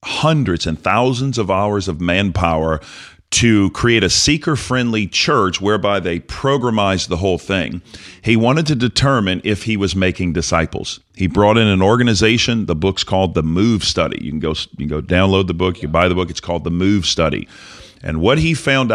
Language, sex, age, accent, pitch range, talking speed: English, male, 40-59, American, 85-115 Hz, 185 wpm